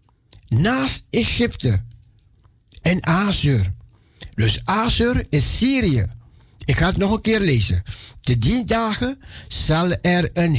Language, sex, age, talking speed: Dutch, male, 60-79, 120 wpm